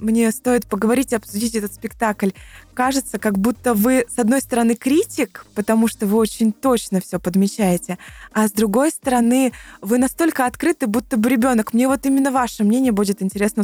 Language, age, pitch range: Russian, 20-39, 215-270 Hz